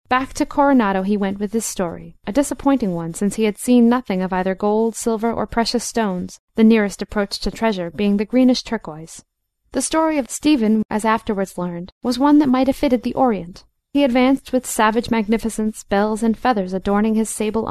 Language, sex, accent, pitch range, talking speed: English, female, American, 195-245 Hz, 195 wpm